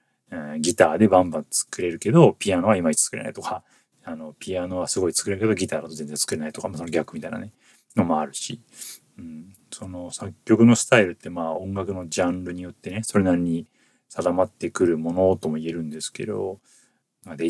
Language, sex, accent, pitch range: Japanese, male, native, 85-115 Hz